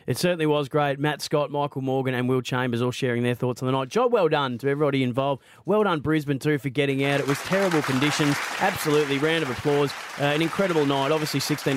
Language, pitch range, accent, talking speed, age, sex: English, 125-150 Hz, Australian, 230 wpm, 30-49, male